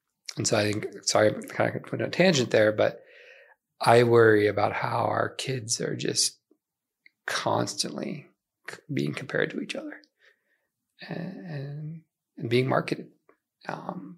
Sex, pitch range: male, 110-140 Hz